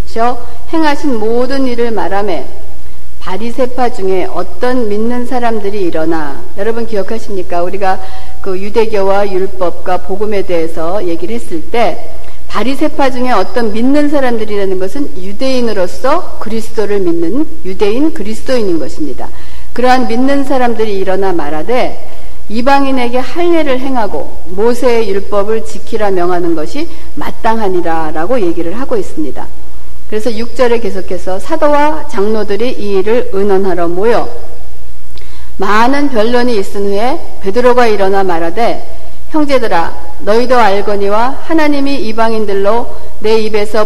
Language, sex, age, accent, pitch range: Korean, female, 60-79, native, 190-255 Hz